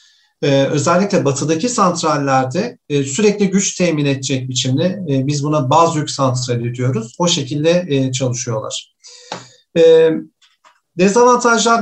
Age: 50-69